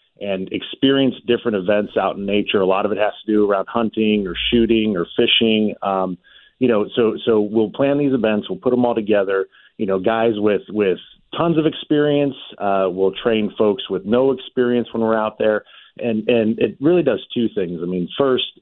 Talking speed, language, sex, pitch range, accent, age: 205 wpm, English, male, 95-120 Hz, American, 40-59